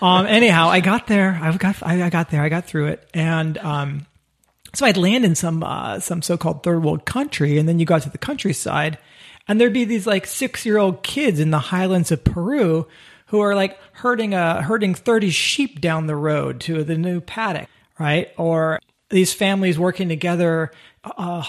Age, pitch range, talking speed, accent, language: 40-59, 155-190 Hz, 200 wpm, American, English